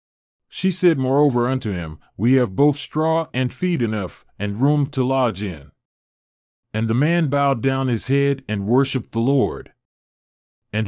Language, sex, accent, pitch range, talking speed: English, male, American, 110-140 Hz, 160 wpm